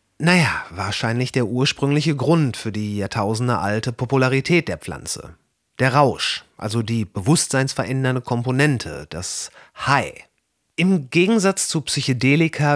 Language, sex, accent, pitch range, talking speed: German, male, German, 110-145 Hz, 110 wpm